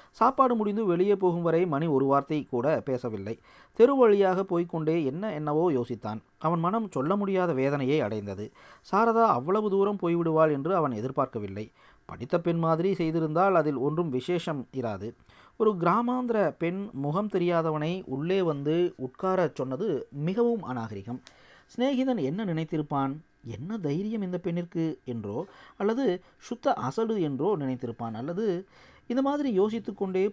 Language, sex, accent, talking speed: Tamil, male, native, 125 wpm